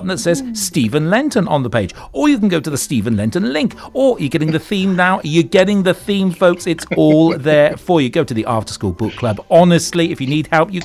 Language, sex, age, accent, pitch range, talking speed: English, male, 40-59, British, 110-170 Hz, 250 wpm